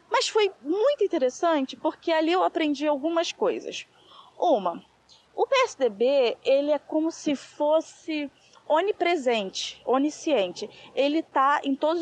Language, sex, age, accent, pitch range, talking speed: Portuguese, female, 20-39, Brazilian, 250-365 Hz, 115 wpm